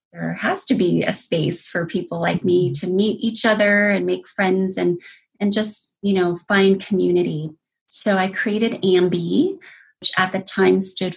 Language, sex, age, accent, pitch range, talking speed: English, female, 30-49, American, 175-200 Hz, 175 wpm